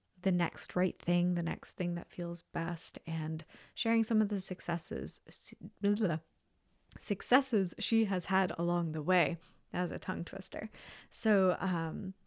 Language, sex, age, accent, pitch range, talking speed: English, female, 20-39, American, 165-195 Hz, 140 wpm